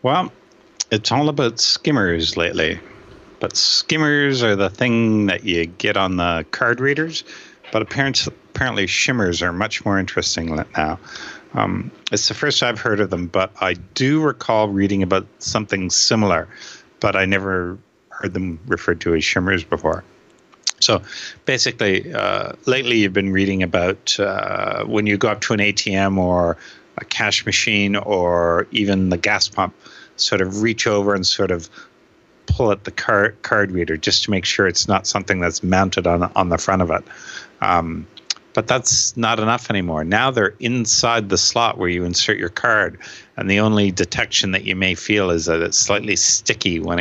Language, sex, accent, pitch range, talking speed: English, male, American, 90-110 Hz, 170 wpm